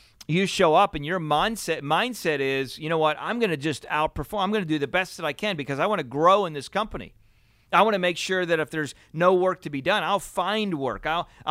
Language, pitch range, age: English, 115-180 Hz, 40-59